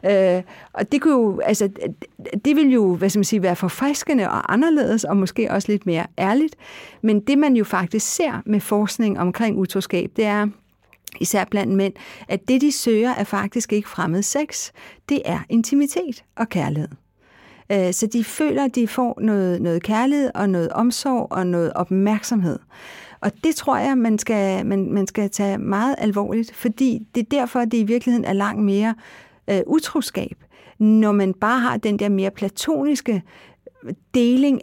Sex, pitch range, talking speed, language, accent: female, 195-250 Hz, 175 wpm, English, Danish